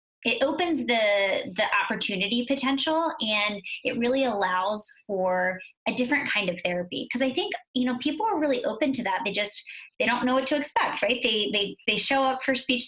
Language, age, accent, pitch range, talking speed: English, 20-39, American, 195-265 Hz, 200 wpm